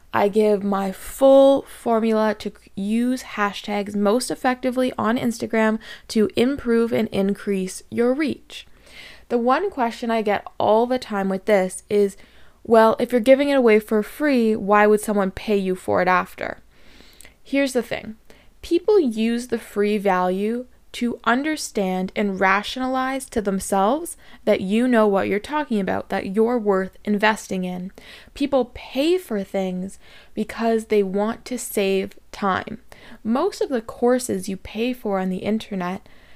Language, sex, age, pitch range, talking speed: English, female, 20-39, 205-250 Hz, 150 wpm